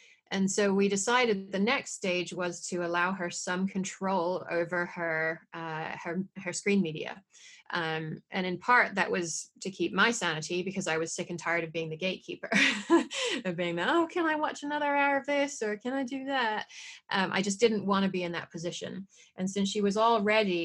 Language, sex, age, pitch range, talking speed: English, female, 30-49, 170-205 Hz, 205 wpm